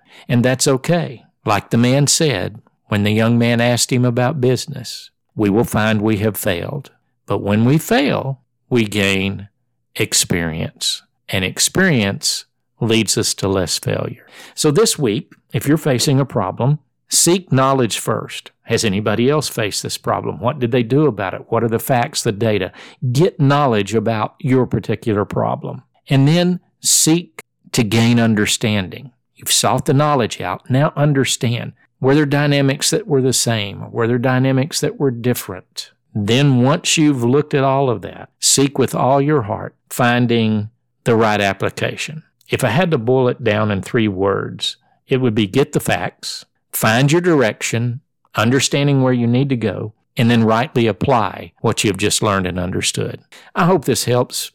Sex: male